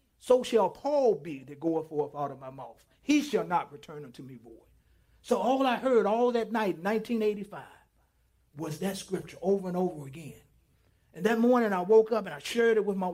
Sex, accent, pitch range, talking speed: male, American, 175-240 Hz, 205 wpm